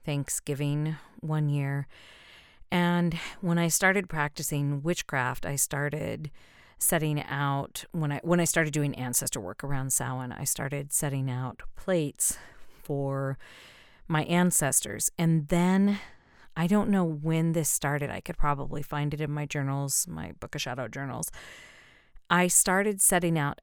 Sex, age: female, 40-59